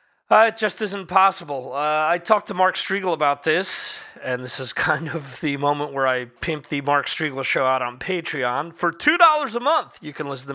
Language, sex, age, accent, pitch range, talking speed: English, male, 30-49, American, 145-225 Hz, 215 wpm